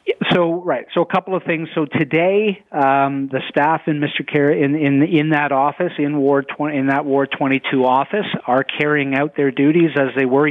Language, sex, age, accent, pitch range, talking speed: English, male, 40-59, American, 120-145 Hz, 210 wpm